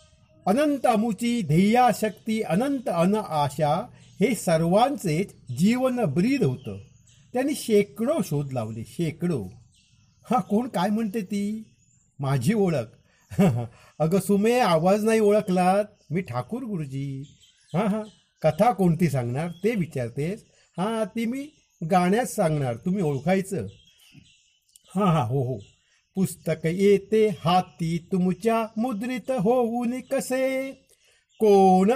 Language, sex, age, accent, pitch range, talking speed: Marathi, male, 50-69, native, 165-225 Hz, 105 wpm